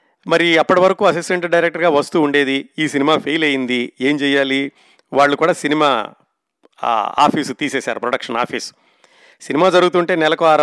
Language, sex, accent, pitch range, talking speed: Telugu, male, native, 130-170 Hz, 135 wpm